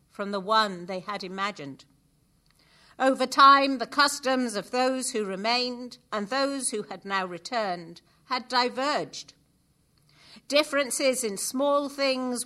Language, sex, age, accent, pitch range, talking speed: English, female, 50-69, British, 175-265 Hz, 125 wpm